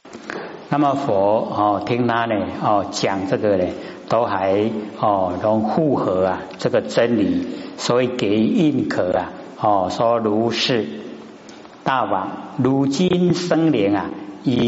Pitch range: 105-135 Hz